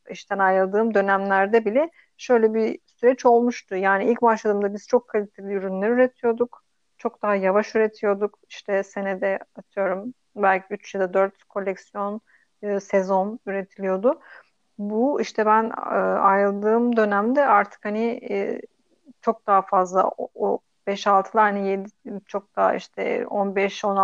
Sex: female